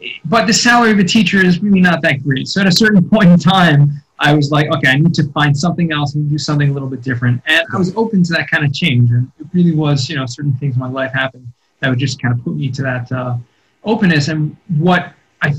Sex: male